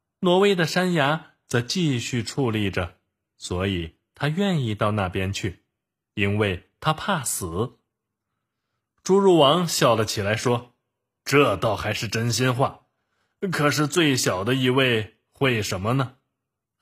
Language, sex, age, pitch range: Chinese, male, 20-39, 105-140 Hz